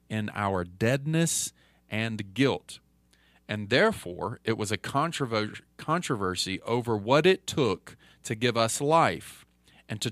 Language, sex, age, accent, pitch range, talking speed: English, male, 40-59, American, 100-140 Hz, 125 wpm